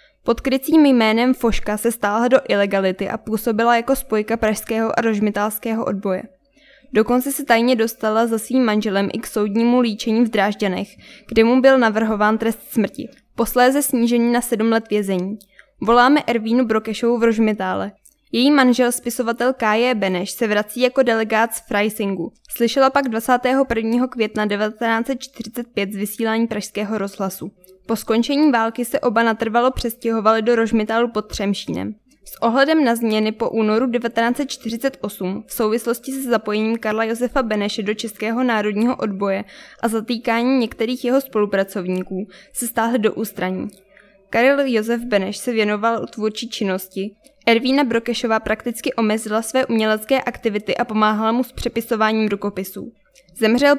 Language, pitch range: Czech, 215-245 Hz